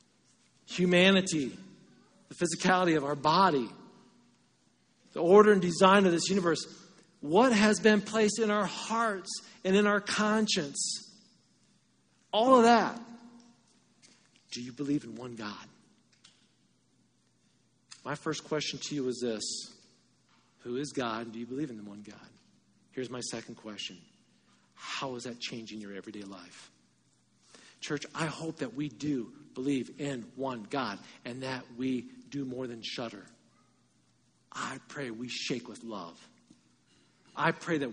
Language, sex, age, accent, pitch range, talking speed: English, male, 50-69, American, 120-180 Hz, 140 wpm